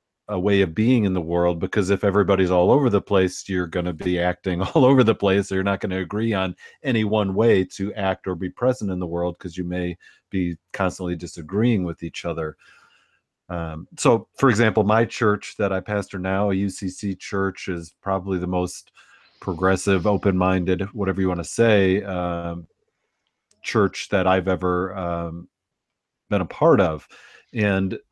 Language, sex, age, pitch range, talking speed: English, male, 40-59, 90-105 Hz, 175 wpm